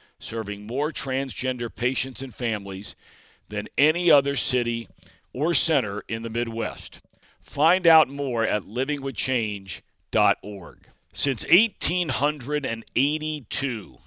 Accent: American